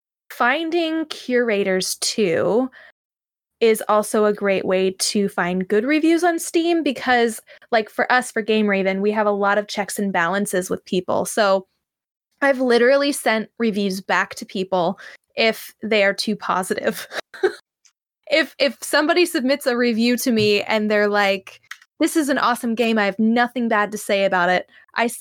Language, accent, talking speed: English, American, 165 wpm